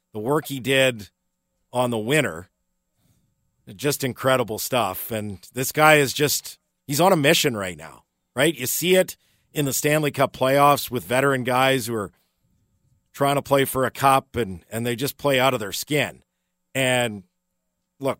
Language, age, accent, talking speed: English, 50-69, American, 170 wpm